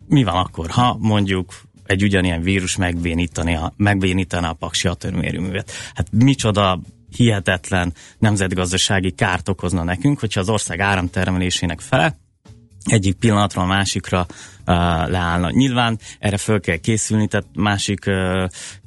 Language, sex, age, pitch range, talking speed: Hungarian, male, 20-39, 90-105 Hz, 120 wpm